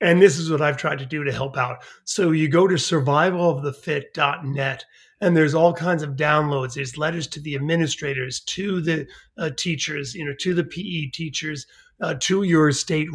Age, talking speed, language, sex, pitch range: 40-59, 195 wpm, English, male, 145-195 Hz